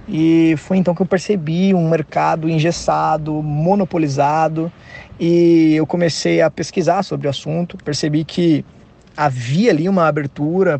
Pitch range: 150-185 Hz